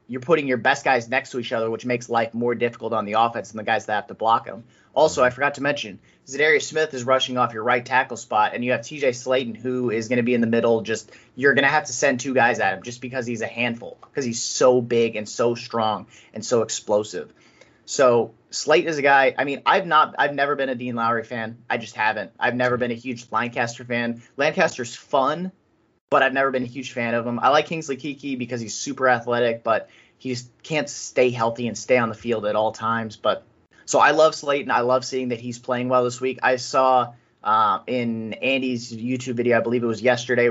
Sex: male